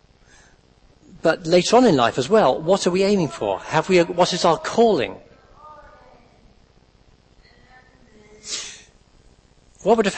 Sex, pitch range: male, 120-180 Hz